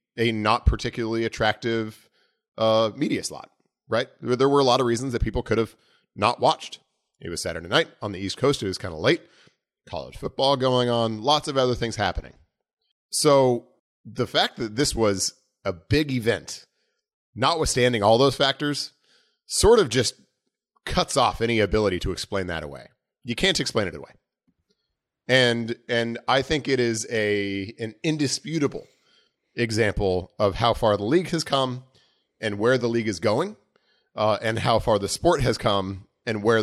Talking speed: 170 wpm